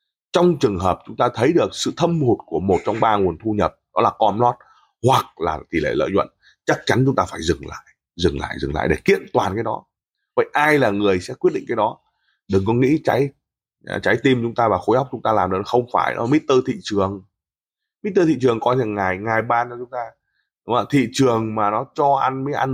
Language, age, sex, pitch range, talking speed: Vietnamese, 20-39, male, 105-145 Hz, 255 wpm